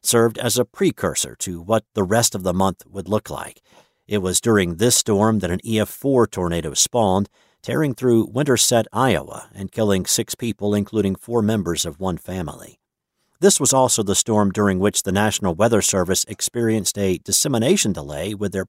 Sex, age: male, 50-69